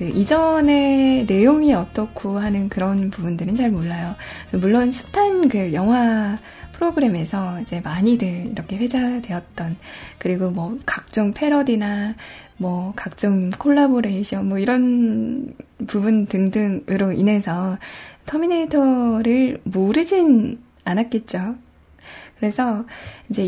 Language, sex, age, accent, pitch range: Korean, female, 10-29, native, 195-255 Hz